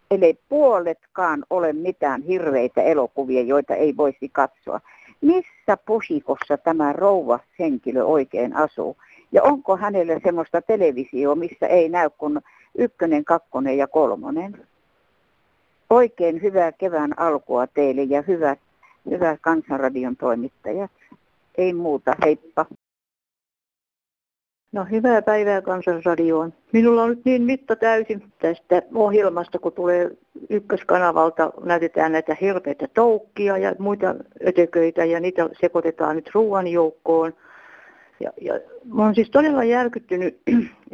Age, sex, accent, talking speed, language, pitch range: 60-79, female, native, 115 wpm, Finnish, 160-205 Hz